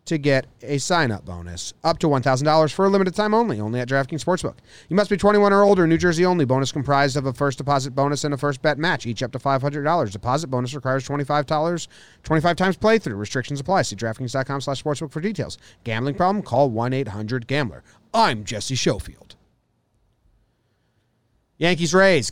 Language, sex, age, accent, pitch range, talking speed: English, male, 30-49, American, 120-155 Hz, 170 wpm